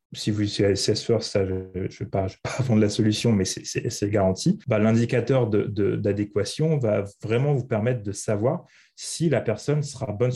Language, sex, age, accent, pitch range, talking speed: French, male, 30-49, French, 105-125 Hz, 190 wpm